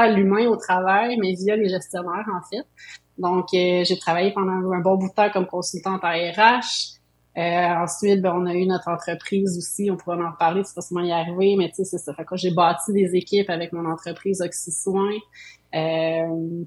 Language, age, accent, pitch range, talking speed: French, 30-49, Canadian, 175-195 Hz, 210 wpm